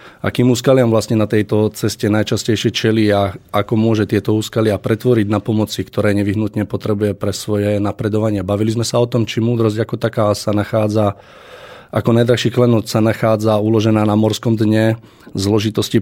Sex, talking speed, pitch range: male, 165 wpm, 105-120 Hz